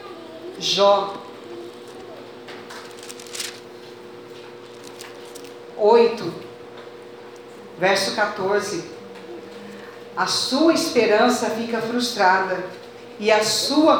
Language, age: Portuguese, 40-59